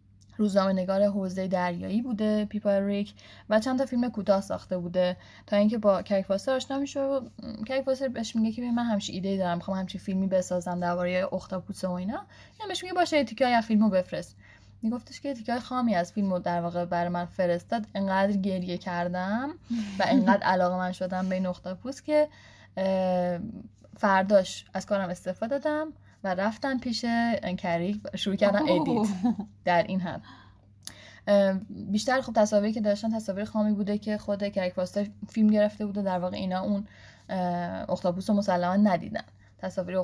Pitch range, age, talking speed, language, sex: 180-220 Hz, 10-29, 155 wpm, English, female